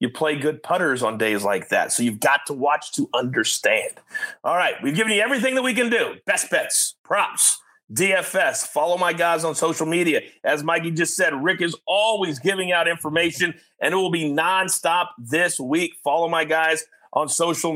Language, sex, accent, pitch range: English, male, American, 150-230 Hz